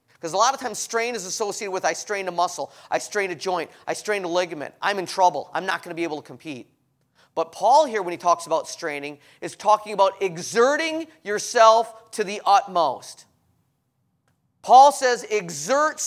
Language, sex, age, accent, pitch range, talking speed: English, male, 30-49, American, 170-235 Hz, 190 wpm